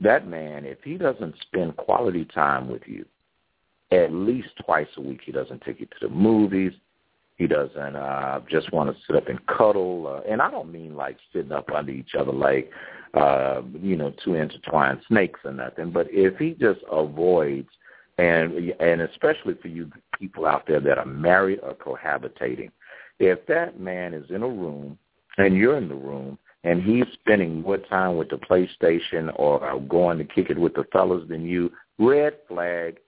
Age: 50-69